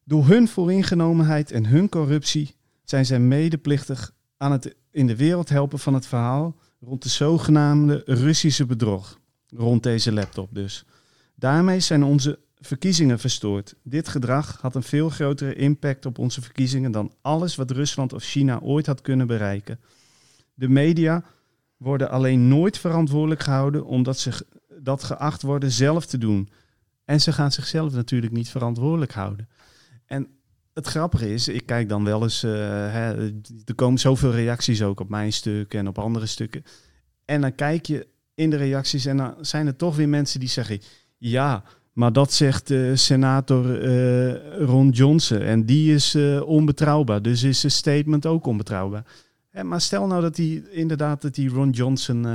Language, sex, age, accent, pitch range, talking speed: Dutch, male, 40-59, Dutch, 115-150 Hz, 165 wpm